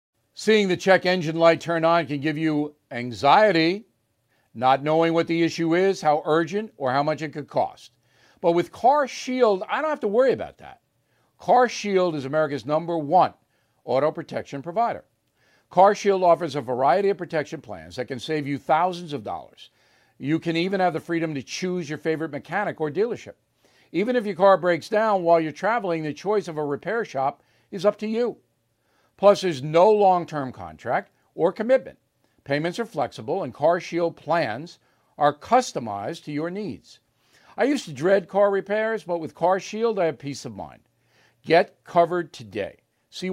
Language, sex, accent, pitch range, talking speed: English, male, American, 145-195 Hz, 175 wpm